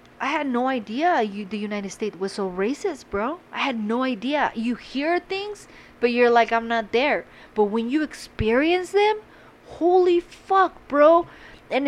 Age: 30-49